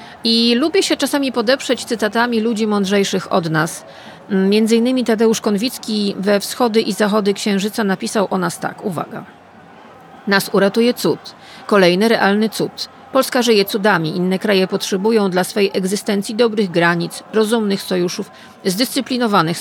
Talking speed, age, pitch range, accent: 135 wpm, 40-59, 190-235 Hz, native